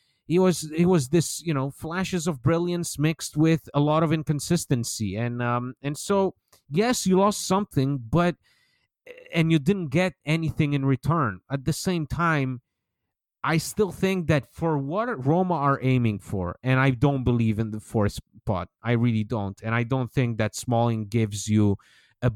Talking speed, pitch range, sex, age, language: 175 wpm, 120-155 Hz, male, 30-49, English